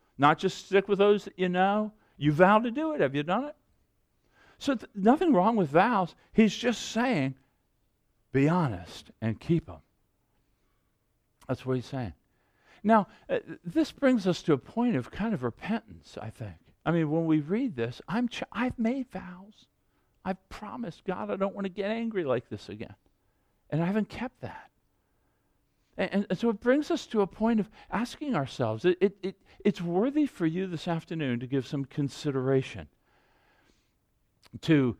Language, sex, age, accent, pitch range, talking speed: English, male, 50-69, American, 145-220 Hz, 170 wpm